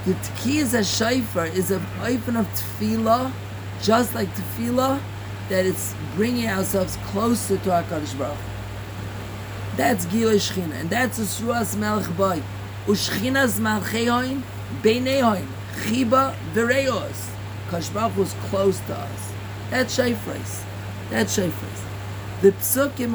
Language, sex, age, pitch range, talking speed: English, male, 40-59, 100-160 Hz, 105 wpm